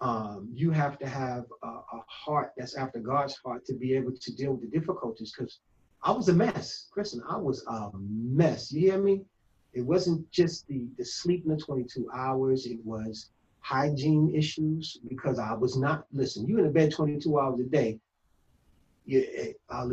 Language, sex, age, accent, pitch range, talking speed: English, male, 30-49, American, 120-150 Hz, 185 wpm